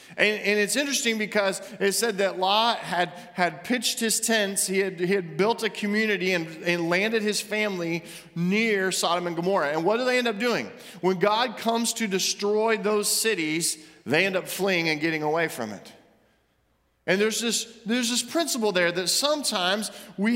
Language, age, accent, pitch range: English, 40-59, American, 185-225 Hz